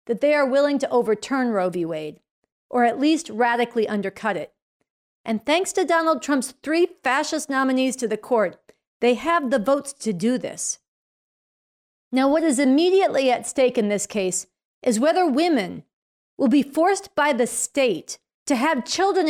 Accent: American